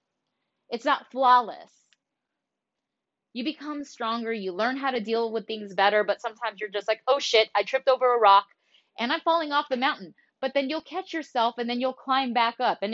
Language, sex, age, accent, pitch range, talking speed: English, female, 10-29, American, 220-310 Hz, 205 wpm